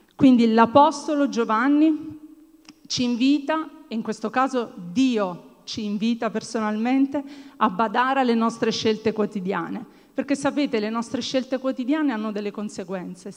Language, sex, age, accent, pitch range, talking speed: Italian, female, 40-59, native, 215-280 Hz, 125 wpm